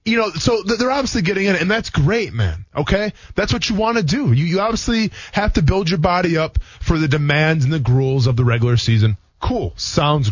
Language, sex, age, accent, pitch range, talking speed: English, male, 20-39, American, 125-180 Hz, 225 wpm